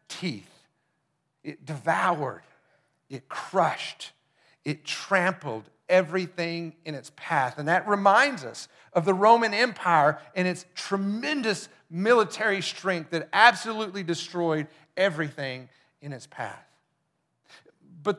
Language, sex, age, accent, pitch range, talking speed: English, male, 40-59, American, 160-205 Hz, 105 wpm